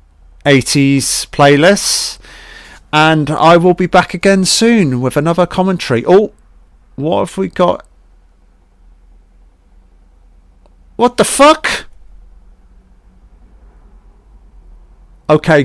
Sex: male